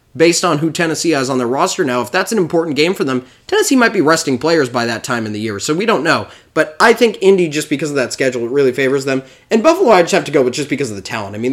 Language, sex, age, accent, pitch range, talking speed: English, male, 20-39, American, 125-175 Hz, 305 wpm